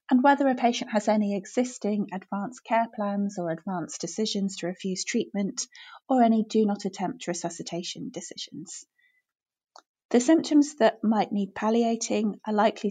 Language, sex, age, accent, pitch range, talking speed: English, female, 30-49, British, 195-240 Hz, 145 wpm